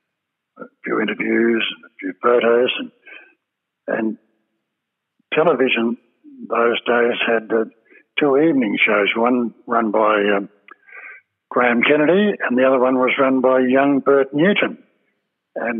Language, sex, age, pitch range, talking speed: English, male, 60-79, 115-140 Hz, 125 wpm